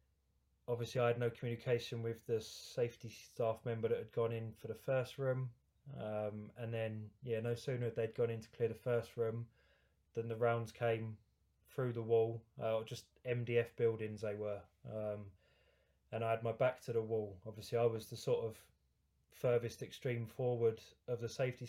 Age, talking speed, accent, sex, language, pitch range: 20-39, 185 wpm, British, male, English, 110-125 Hz